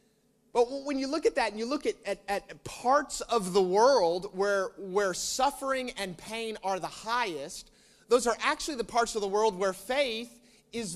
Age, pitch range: 30-49, 200-260 Hz